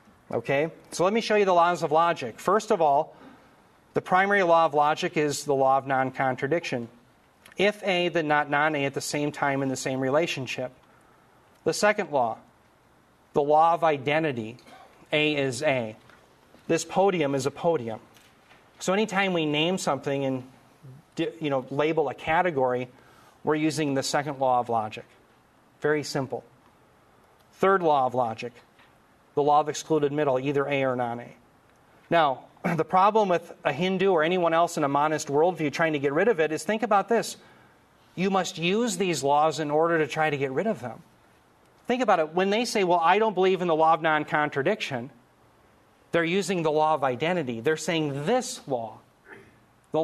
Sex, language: male, English